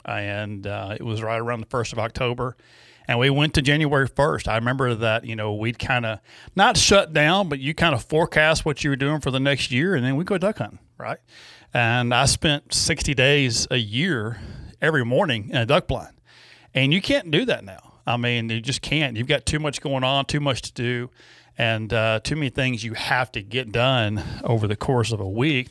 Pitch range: 115-145 Hz